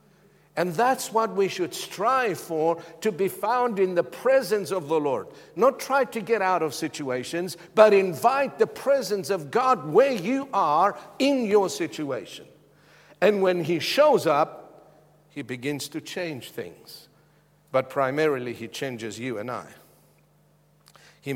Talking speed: 150 wpm